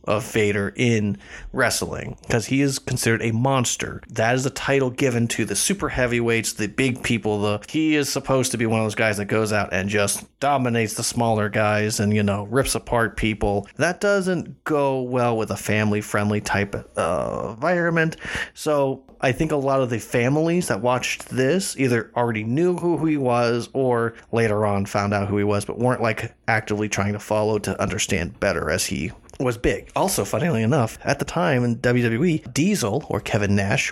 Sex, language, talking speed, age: male, English, 195 wpm, 30-49